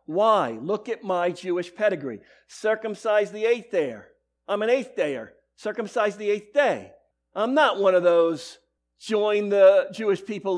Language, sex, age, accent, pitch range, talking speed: English, male, 50-69, American, 195-250 Hz, 155 wpm